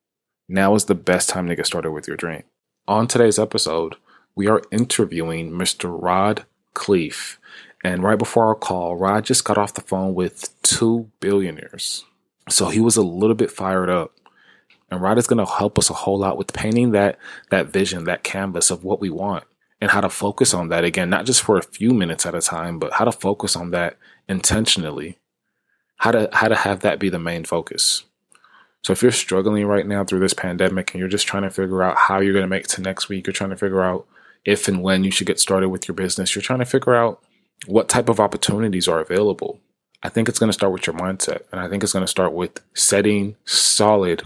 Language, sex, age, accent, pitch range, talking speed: English, male, 20-39, American, 95-105 Hz, 225 wpm